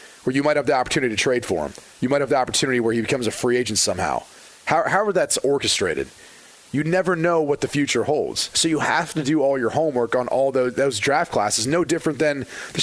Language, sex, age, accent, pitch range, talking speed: English, male, 30-49, American, 130-185 Hz, 235 wpm